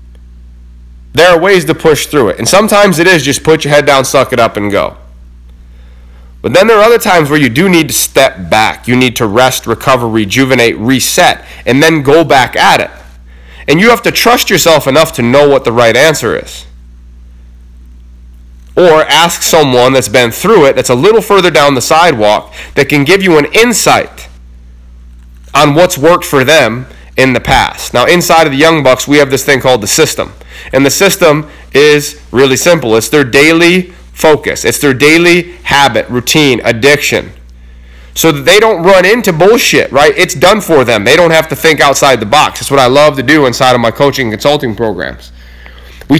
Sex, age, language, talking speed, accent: male, 30-49, English, 195 wpm, American